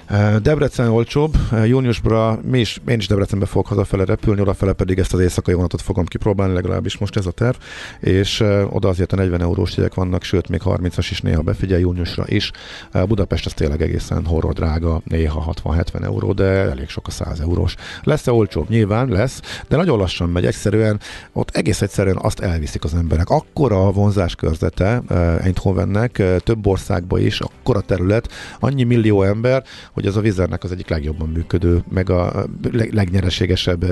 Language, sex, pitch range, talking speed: Hungarian, male, 90-110 Hz, 165 wpm